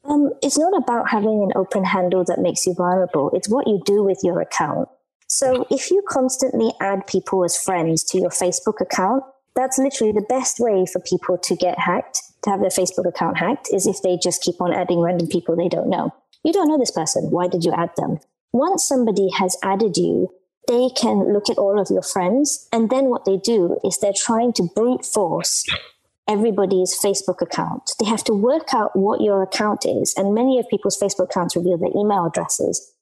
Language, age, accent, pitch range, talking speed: English, 20-39, British, 180-240 Hz, 210 wpm